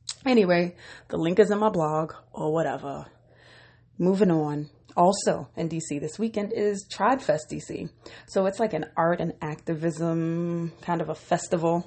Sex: female